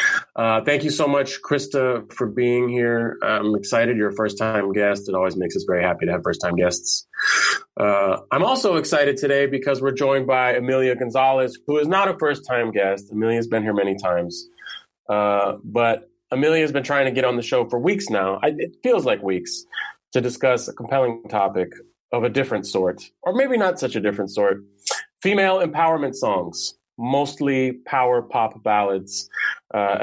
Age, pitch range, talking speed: 30-49, 95-130 Hz, 175 wpm